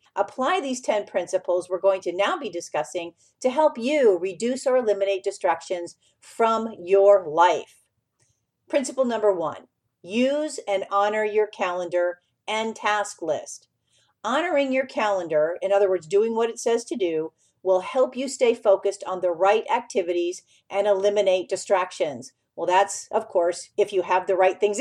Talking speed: 155 wpm